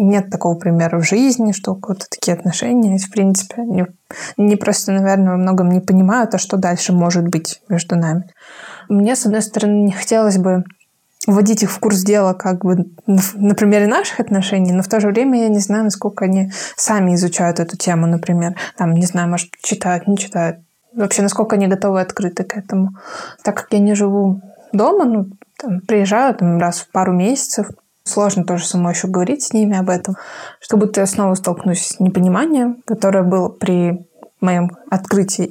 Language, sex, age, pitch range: Russian, female, 20-39, 185-215 Hz